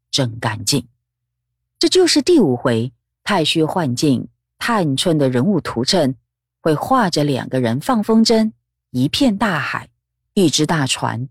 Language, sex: Chinese, female